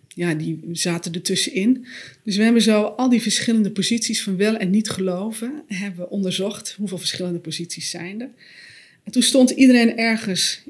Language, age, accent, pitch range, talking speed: Dutch, 40-59, Dutch, 180-230 Hz, 170 wpm